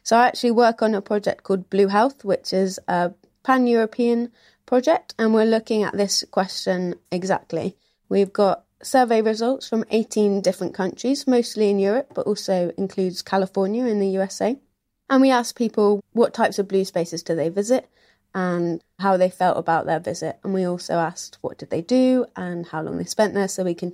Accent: British